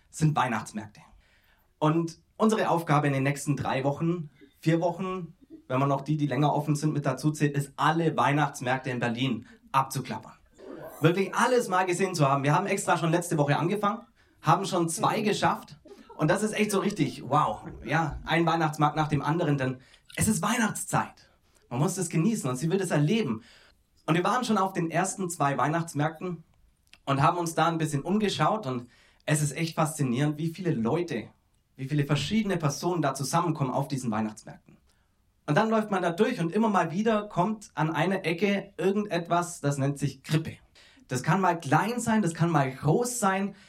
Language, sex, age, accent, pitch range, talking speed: German, male, 30-49, German, 145-195 Hz, 185 wpm